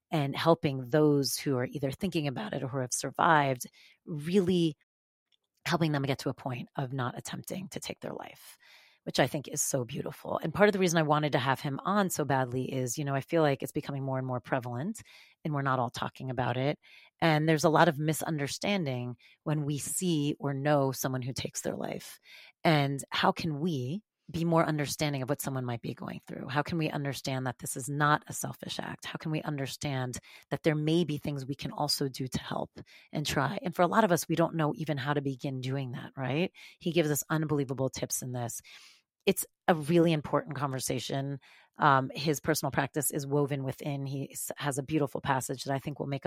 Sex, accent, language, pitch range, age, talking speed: female, American, English, 135-160 Hz, 30-49, 220 wpm